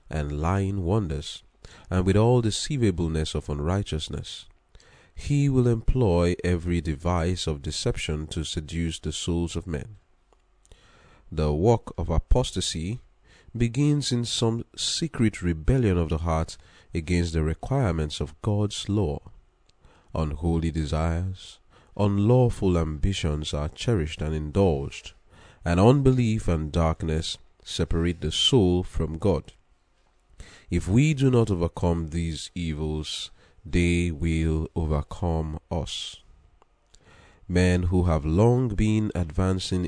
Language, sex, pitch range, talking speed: English, male, 80-105 Hz, 110 wpm